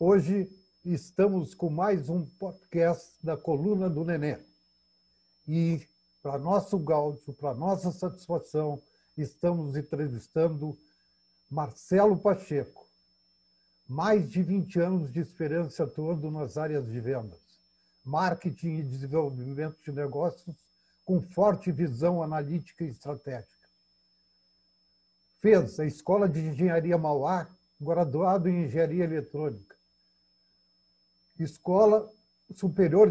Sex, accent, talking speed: male, Brazilian, 100 wpm